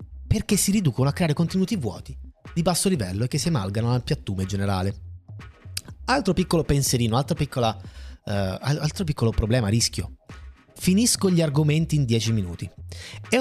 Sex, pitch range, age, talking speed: male, 100-165 Hz, 30-49, 150 wpm